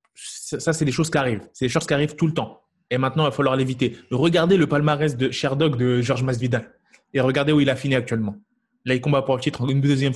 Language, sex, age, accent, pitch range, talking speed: French, male, 20-39, French, 130-155 Hz, 255 wpm